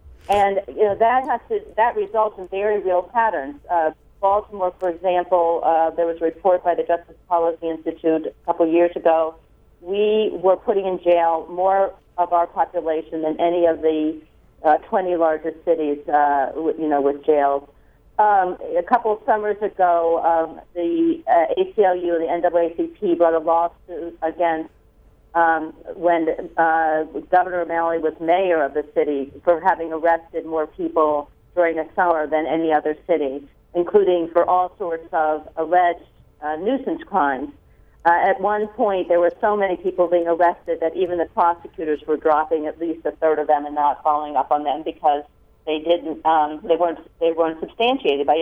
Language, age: English, 40-59